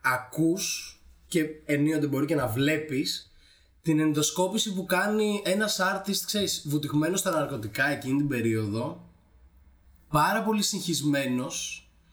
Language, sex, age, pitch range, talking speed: Greek, male, 20-39, 125-190 Hz, 115 wpm